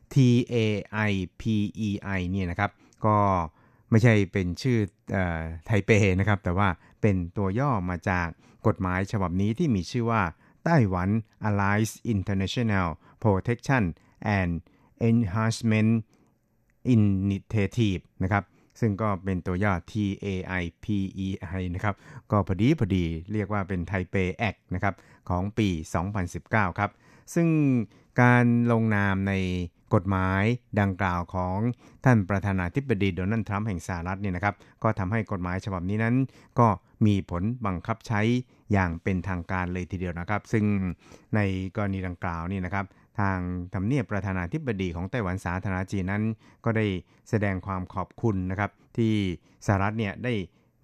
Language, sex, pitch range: Thai, male, 95-115 Hz